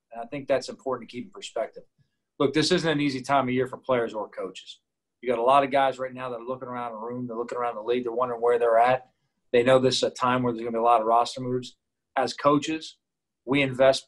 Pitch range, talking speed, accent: 120-135 Hz, 275 wpm, American